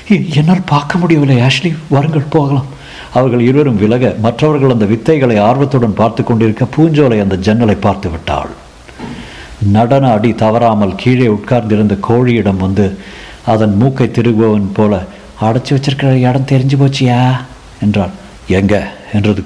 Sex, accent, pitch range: male, native, 100-130 Hz